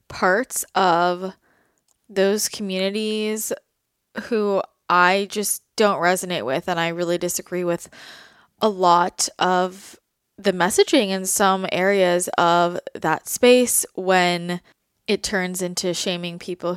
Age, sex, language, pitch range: 20-39, female, English, 185-220 Hz